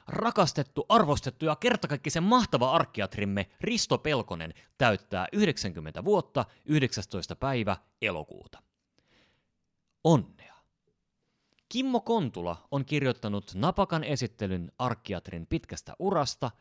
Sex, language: male, Finnish